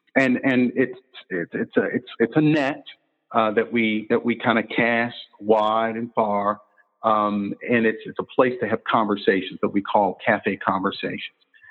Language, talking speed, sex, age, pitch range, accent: English, 180 wpm, male, 50-69, 100-115 Hz, American